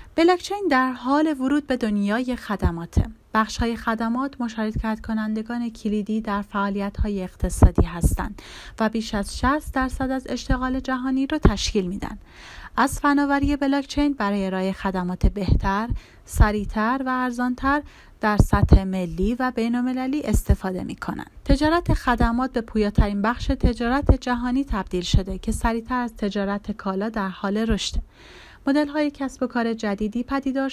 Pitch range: 200-260 Hz